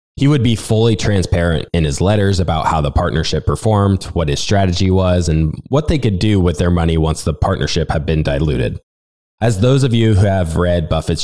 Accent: American